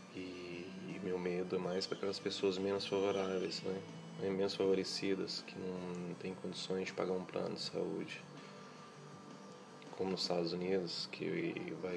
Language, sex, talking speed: Portuguese, male, 135 wpm